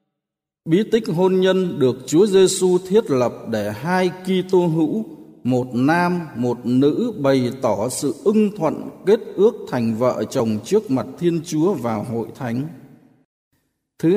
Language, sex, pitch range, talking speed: Vietnamese, male, 125-185 Hz, 150 wpm